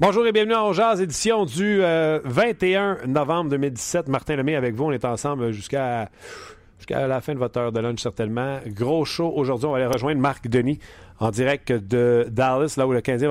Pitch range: 115-145 Hz